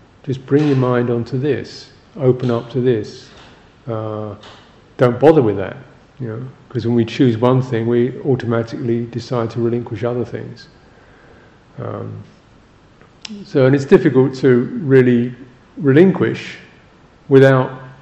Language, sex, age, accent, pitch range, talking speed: English, male, 50-69, British, 110-125 Hz, 130 wpm